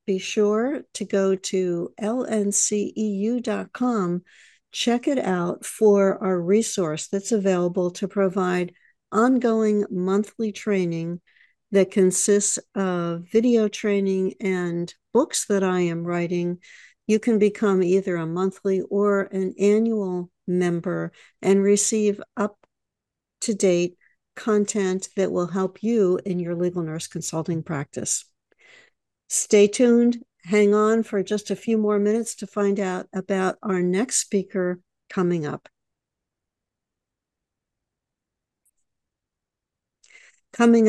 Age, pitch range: 60-79, 180-215 Hz